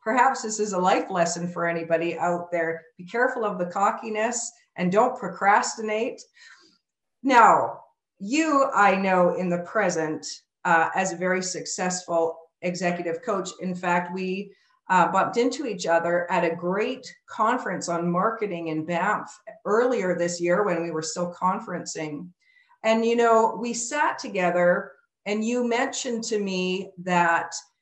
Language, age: English, 50-69